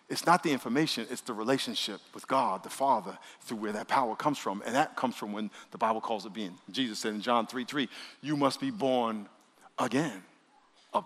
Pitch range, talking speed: 130-175 Hz, 205 wpm